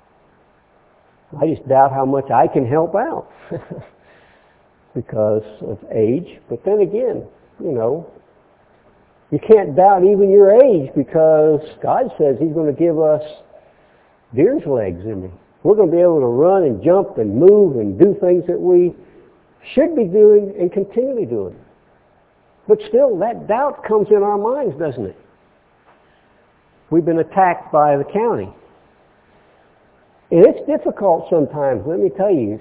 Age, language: 60-79, English